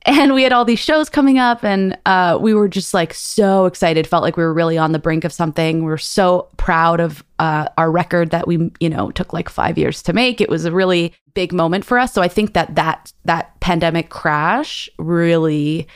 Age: 20-39